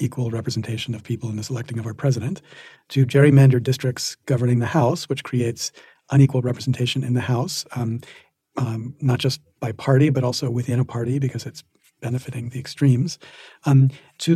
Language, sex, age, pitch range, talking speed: English, male, 40-59, 125-155 Hz, 170 wpm